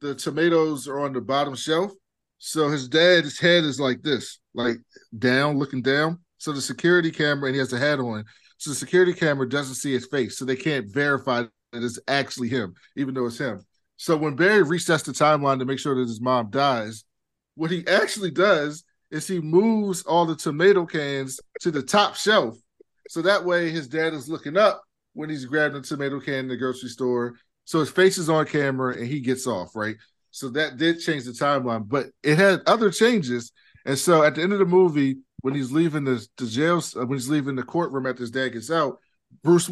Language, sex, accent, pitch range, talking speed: English, male, American, 130-165 Hz, 215 wpm